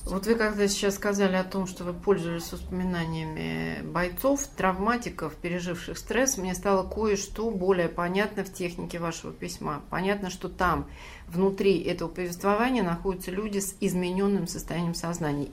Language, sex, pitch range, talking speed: Russian, female, 175-205 Hz, 140 wpm